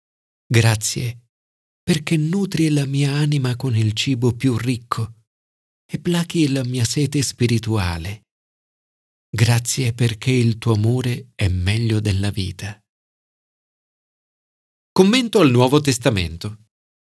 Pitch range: 110-160 Hz